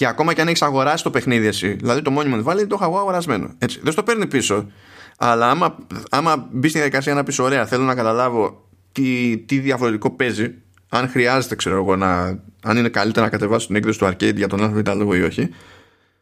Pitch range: 95-135 Hz